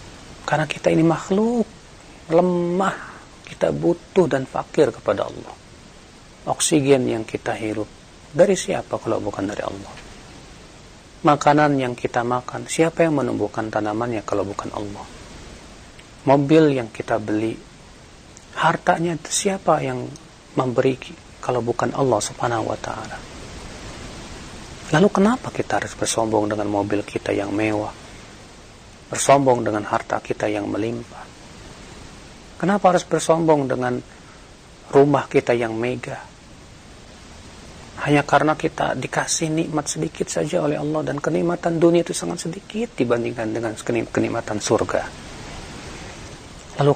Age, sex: 40-59, male